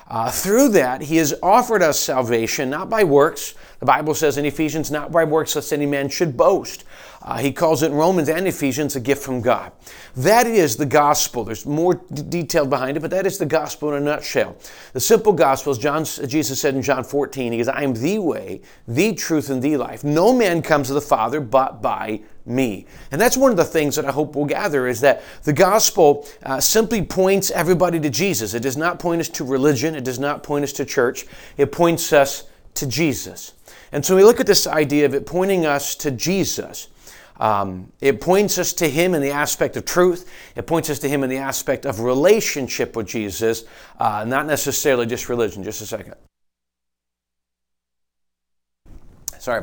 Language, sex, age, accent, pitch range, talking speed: English, male, 40-59, American, 130-165 Hz, 205 wpm